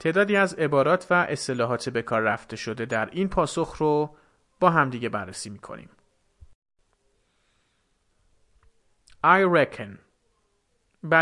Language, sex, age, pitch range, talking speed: Persian, male, 30-49, 105-155 Hz, 105 wpm